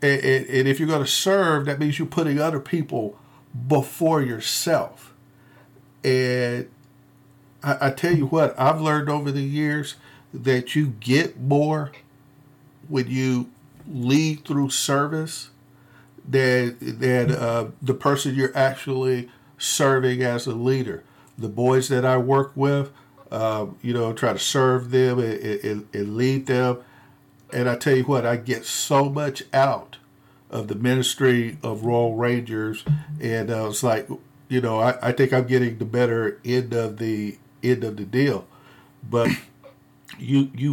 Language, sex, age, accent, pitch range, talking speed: English, male, 50-69, American, 120-140 Hz, 150 wpm